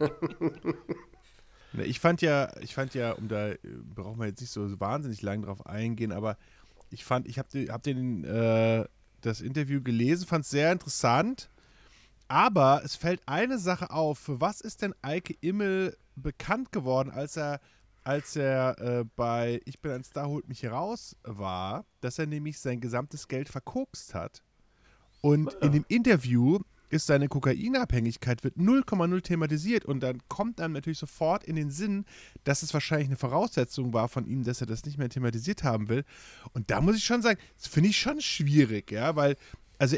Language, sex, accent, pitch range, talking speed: German, male, German, 125-165 Hz, 175 wpm